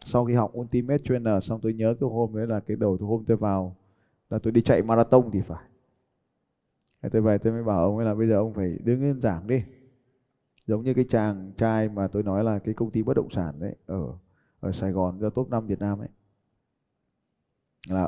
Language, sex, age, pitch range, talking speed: Vietnamese, male, 20-39, 105-130 Hz, 220 wpm